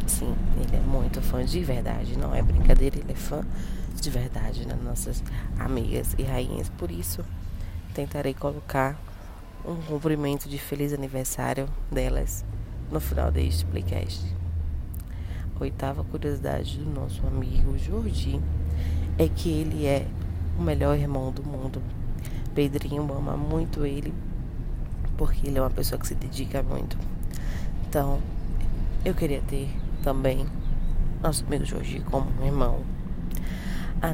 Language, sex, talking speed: Portuguese, female, 130 wpm